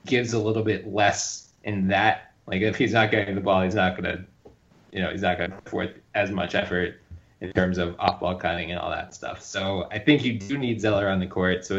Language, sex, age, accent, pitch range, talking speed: English, male, 20-39, American, 95-120 Hz, 260 wpm